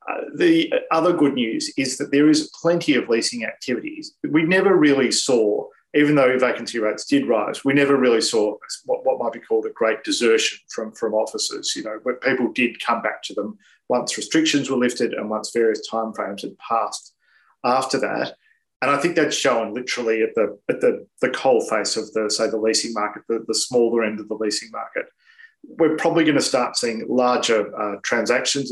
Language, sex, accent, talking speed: English, male, Australian, 200 wpm